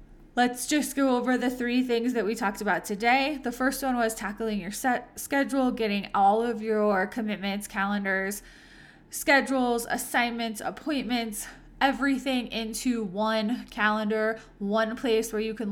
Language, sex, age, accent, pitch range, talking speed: English, female, 20-39, American, 205-245 Hz, 145 wpm